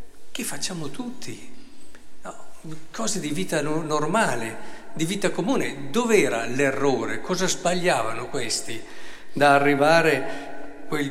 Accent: native